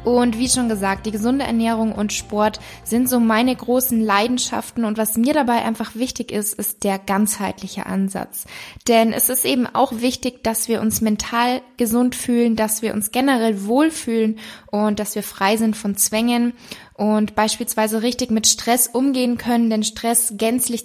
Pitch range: 210-240 Hz